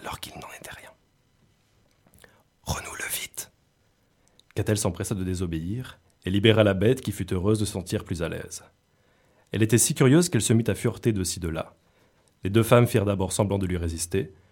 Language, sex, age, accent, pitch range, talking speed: French, male, 30-49, French, 90-110 Hz, 180 wpm